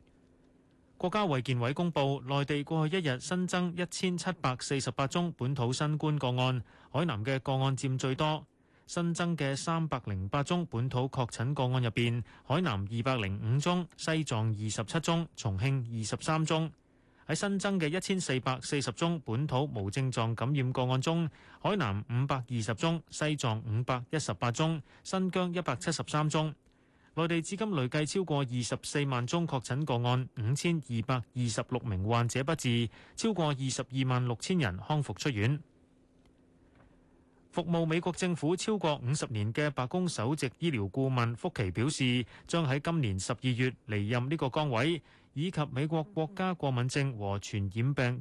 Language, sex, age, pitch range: Chinese, male, 30-49, 120-160 Hz